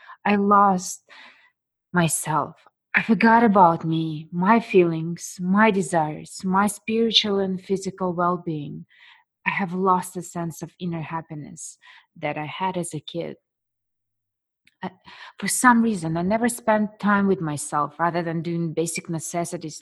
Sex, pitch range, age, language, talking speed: female, 160-195 Hz, 20-39, English, 135 wpm